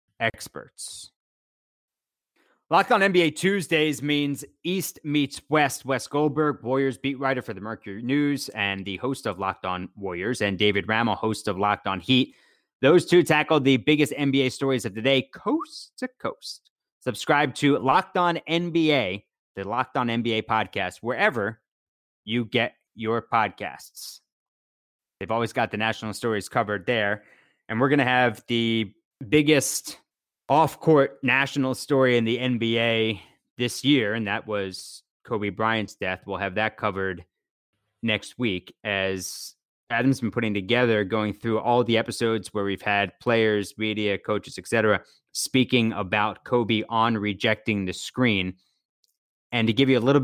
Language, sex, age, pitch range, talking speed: English, male, 30-49, 105-135 Hz, 150 wpm